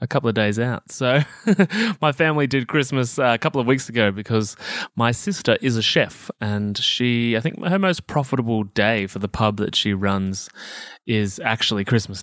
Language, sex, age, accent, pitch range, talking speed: English, male, 20-39, Australian, 110-145 Hz, 190 wpm